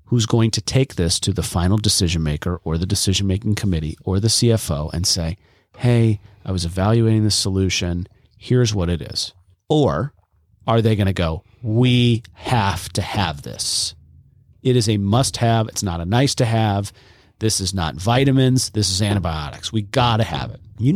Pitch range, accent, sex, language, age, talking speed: 90-120 Hz, American, male, English, 40-59, 185 wpm